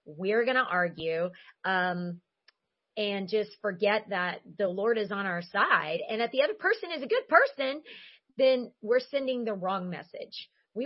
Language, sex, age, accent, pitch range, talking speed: English, female, 30-49, American, 185-230 Hz, 165 wpm